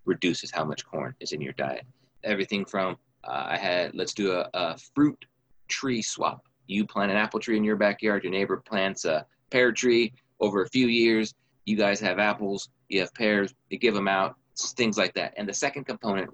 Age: 30-49